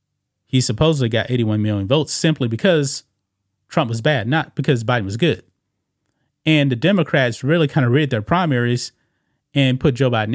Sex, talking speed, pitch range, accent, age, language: male, 170 wpm, 115-150 Hz, American, 30-49, English